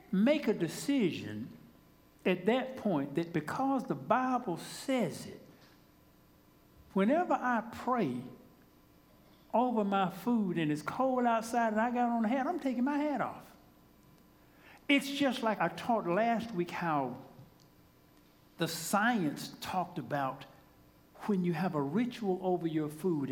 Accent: American